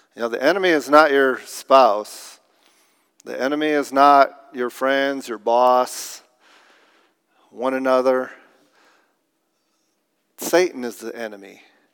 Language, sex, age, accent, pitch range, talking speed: English, male, 50-69, American, 125-150 Hz, 110 wpm